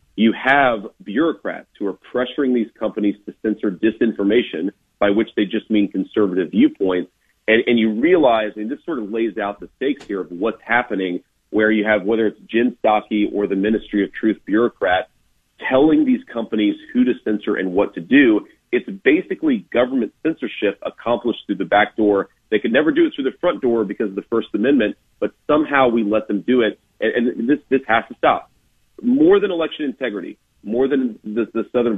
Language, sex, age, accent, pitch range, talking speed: English, male, 40-59, American, 105-135 Hz, 190 wpm